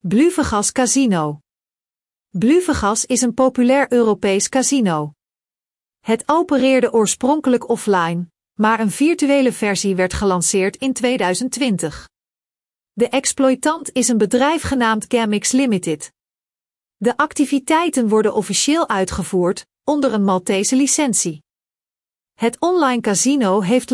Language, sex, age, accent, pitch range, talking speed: Dutch, female, 40-59, Dutch, 200-270 Hz, 105 wpm